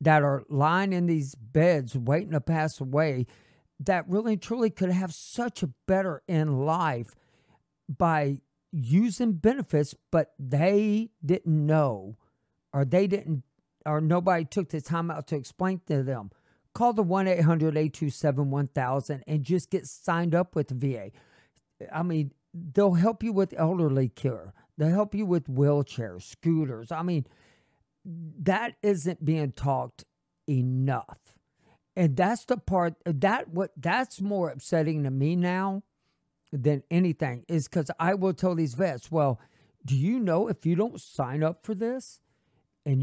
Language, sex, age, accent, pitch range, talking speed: English, male, 50-69, American, 145-190 Hz, 150 wpm